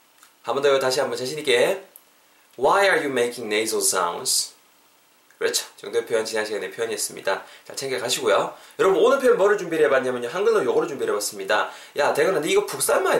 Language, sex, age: Korean, male, 20-39